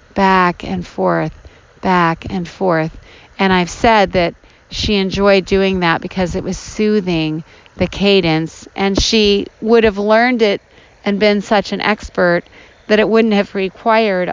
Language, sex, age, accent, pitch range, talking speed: English, female, 40-59, American, 170-210 Hz, 150 wpm